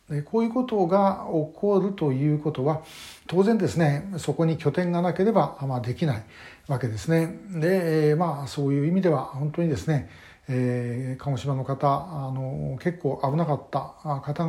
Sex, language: male, Japanese